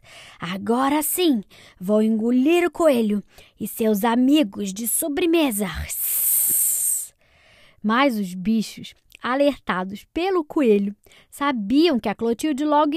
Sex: female